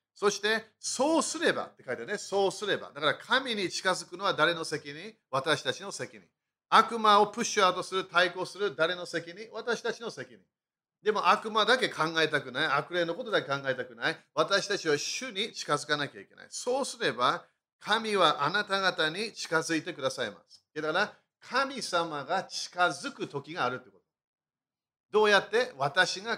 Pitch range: 155-220 Hz